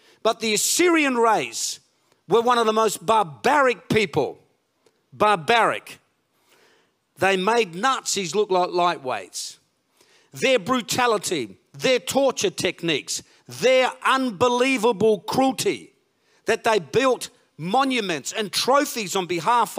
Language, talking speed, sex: English, 105 wpm, male